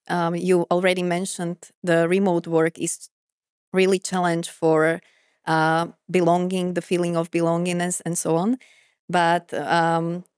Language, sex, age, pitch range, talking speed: Slovak, female, 30-49, 170-190 Hz, 125 wpm